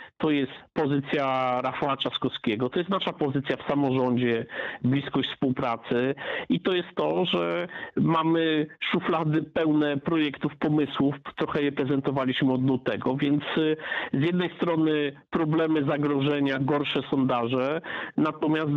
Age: 50-69